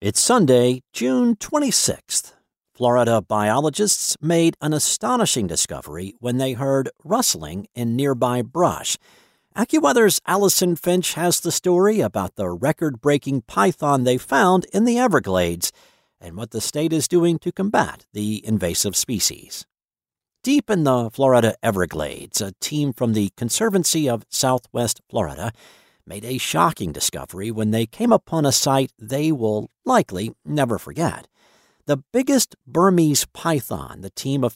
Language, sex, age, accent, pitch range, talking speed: English, male, 50-69, American, 110-165 Hz, 135 wpm